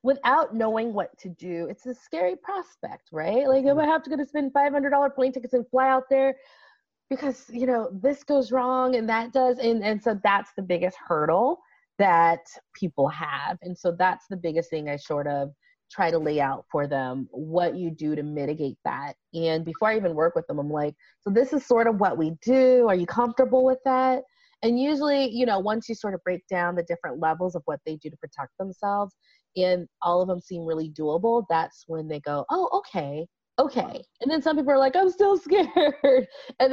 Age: 30-49